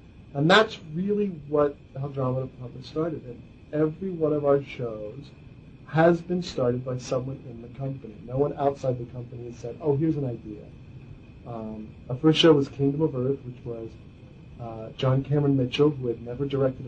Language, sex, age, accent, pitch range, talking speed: English, male, 40-59, American, 120-145 Hz, 180 wpm